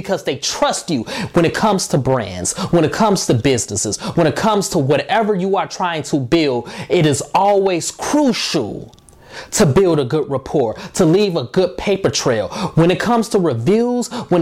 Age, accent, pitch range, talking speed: 20-39, American, 145-195 Hz, 185 wpm